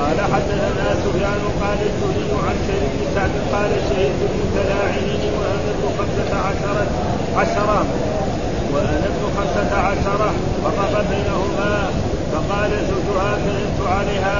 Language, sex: Arabic, male